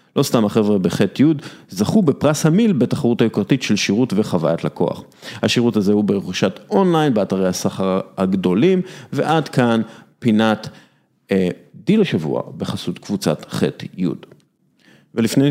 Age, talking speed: 40-59, 120 wpm